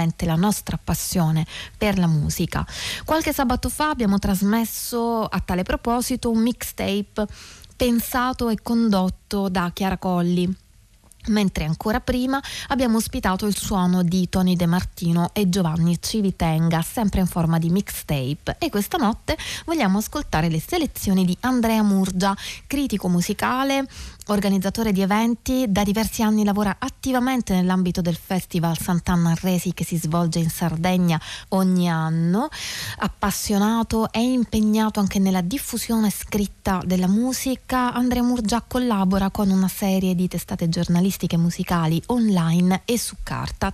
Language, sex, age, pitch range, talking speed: Italian, female, 20-39, 175-225 Hz, 130 wpm